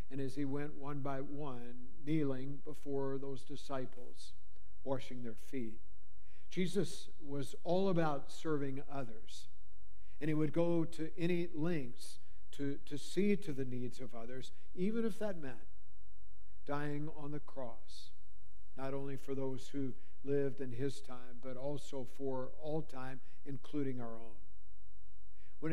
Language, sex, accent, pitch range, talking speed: English, male, American, 105-150 Hz, 140 wpm